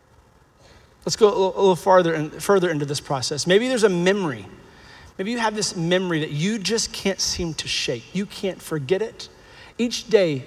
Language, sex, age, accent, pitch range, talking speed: English, male, 30-49, American, 155-205 Hz, 185 wpm